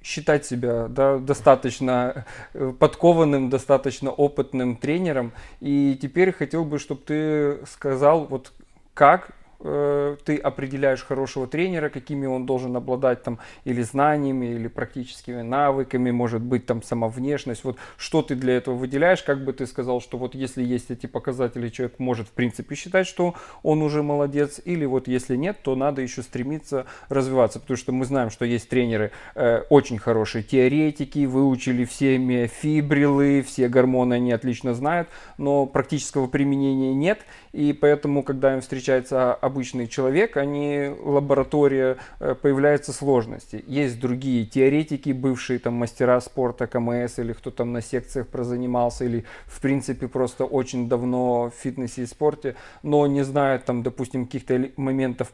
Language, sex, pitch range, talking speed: Russian, male, 125-140 Hz, 145 wpm